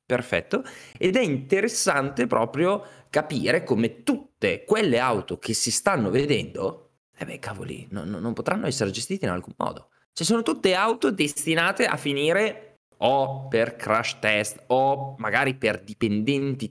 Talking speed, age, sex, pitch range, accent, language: 135 wpm, 20-39, male, 105-150 Hz, native, Italian